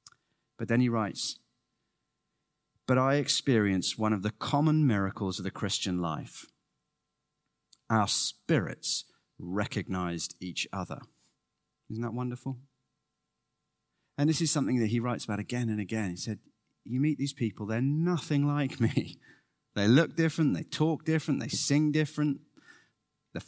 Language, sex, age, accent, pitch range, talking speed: English, male, 30-49, British, 110-150 Hz, 140 wpm